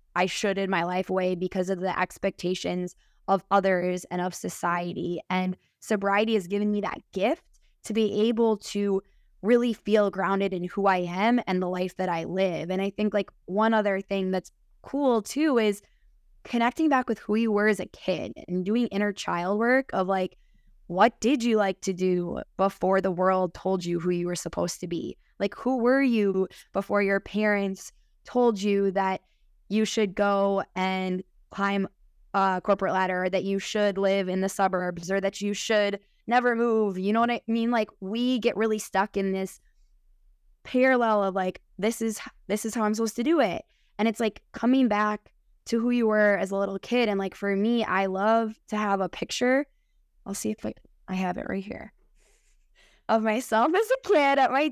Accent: American